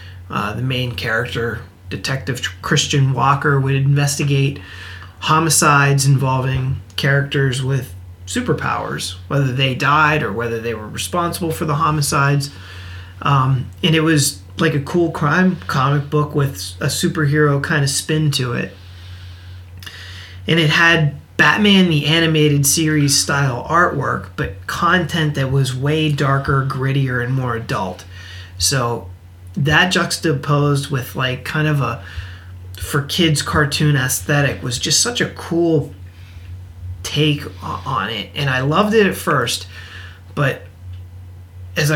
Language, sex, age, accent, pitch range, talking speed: English, male, 30-49, American, 95-150 Hz, 130 wpm